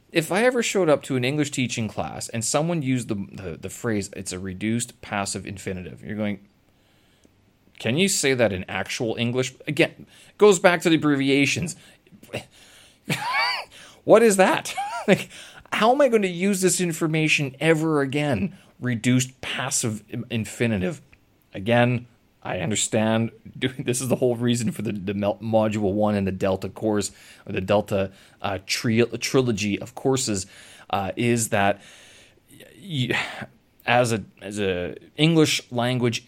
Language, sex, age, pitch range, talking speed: English, male, 30-49, 105-135 Hz, 145 wpm